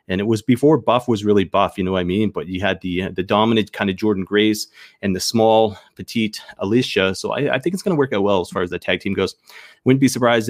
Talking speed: 275 wpm